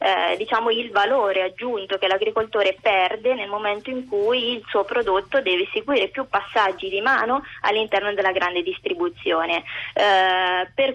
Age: 20-39